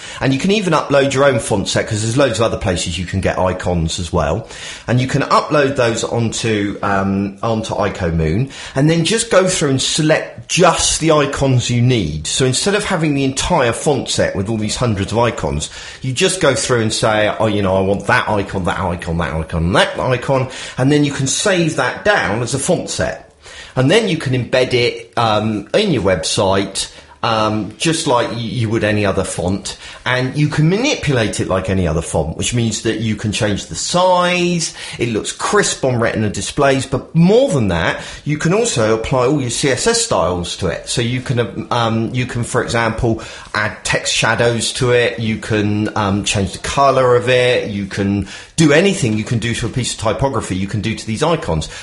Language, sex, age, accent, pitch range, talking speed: English, male, 30-49, British, 100-140 Hz, 210 wpm